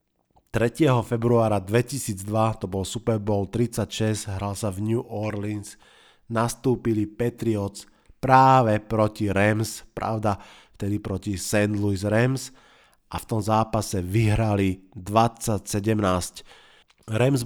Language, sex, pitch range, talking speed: Slovak, male, 105-120 Hz, 105 wpm